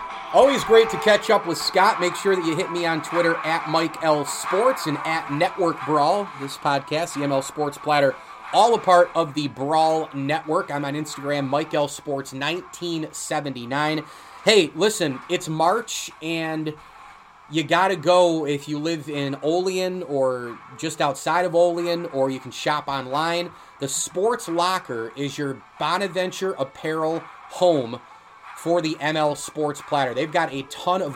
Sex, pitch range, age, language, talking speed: male, 140-170 Hz, 30-49, English, 155 wpm